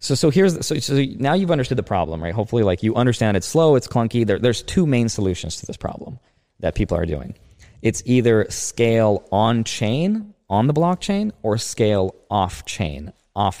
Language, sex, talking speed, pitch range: English, male, 185 wpm, 95-120 Hz